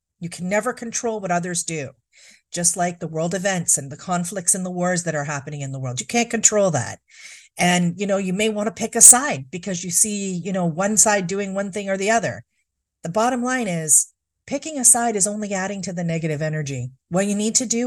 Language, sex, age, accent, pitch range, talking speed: English, female, 40-59, American, 160-210 Hz, 235 wpm